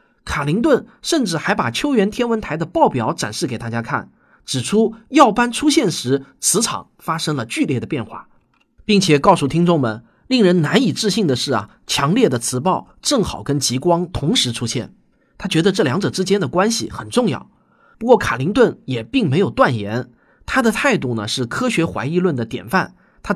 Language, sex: Chinese, male